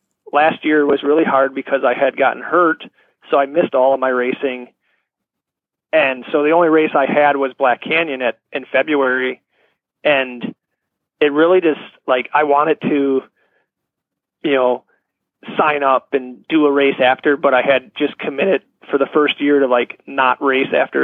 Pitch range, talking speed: 130-150 Hz, 175 wpm